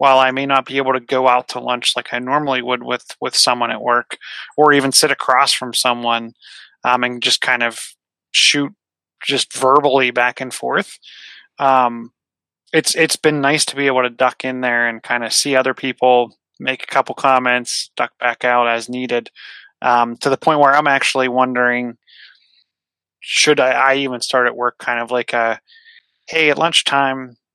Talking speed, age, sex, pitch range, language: 185 wpm, 20-39, male, 120-135 Hz, English